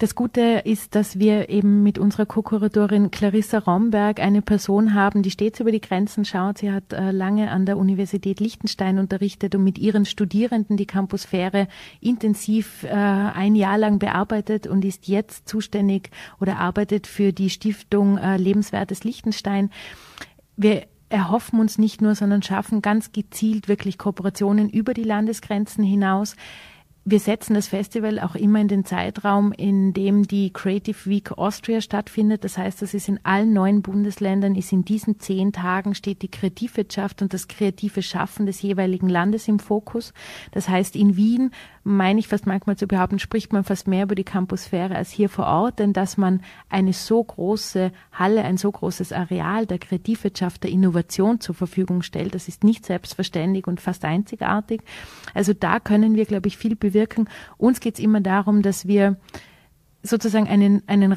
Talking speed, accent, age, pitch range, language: 170 wpm, Austrian, 30-49, 195-215 Hz, German